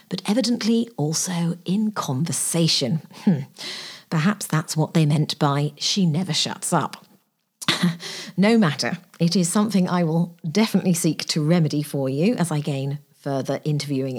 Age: 40-59